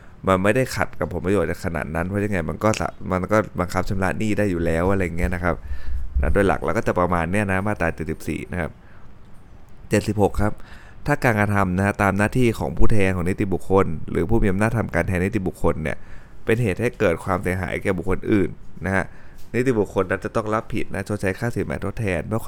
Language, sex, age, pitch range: Thai, male, 20-39, 90-105 Hz